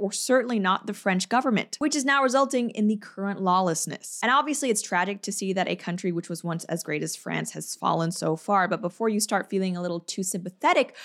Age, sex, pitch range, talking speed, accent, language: 20-39, female, 185-230 Hz, 235 wpm, American, English